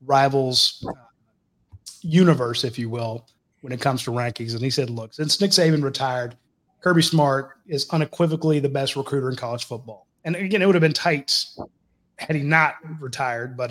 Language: English